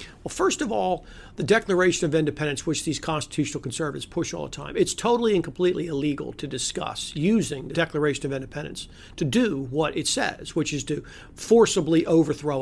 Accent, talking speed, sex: American, 180 wpm, male